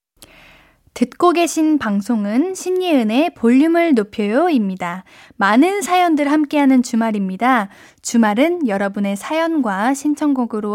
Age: 10-29